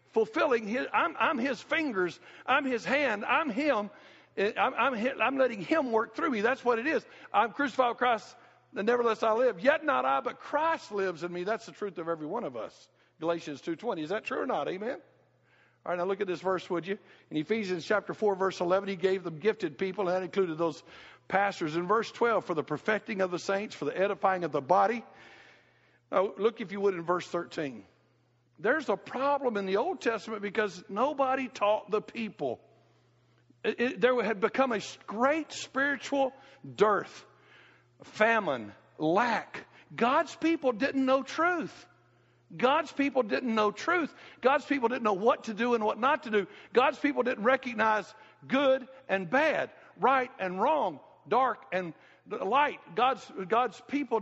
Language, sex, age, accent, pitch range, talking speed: English, male, 60-79, American, 190-265 Hz, 180 wpm